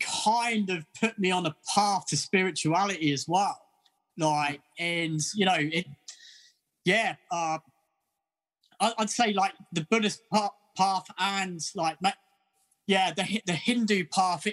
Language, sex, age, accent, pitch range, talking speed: English, male, 20-39, British, 155-195 Hz, 130 wpm